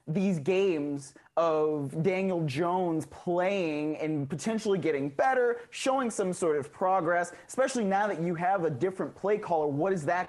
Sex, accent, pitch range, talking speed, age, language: male, American, 160-210 Hz, 155 wpm, 30-49, English